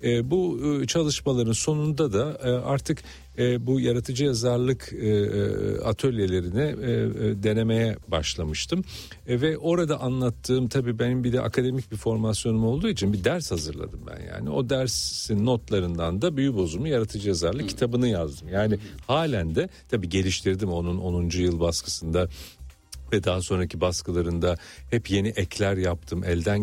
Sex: male